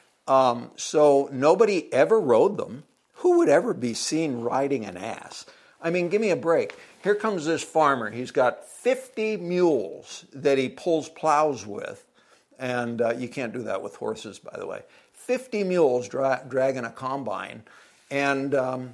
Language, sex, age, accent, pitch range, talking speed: English, male, 60-79, American, 125-175 Hz, 160 wpm